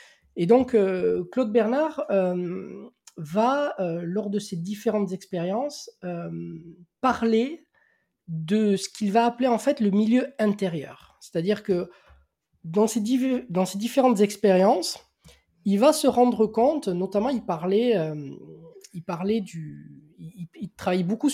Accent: French